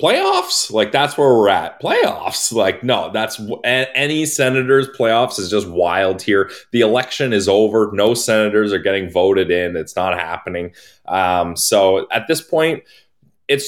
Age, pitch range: 20-39, 95-120 Hz